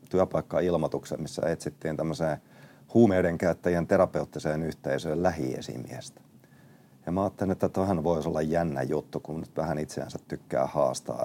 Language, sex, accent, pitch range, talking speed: Finnish, male, native, 75-90 Hz, 130 wpm